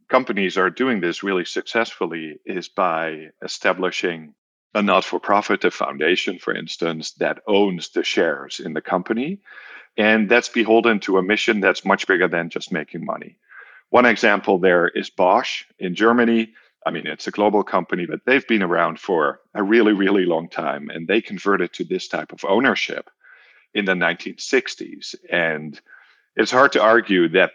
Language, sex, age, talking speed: English, male, 50-69, 165 wpm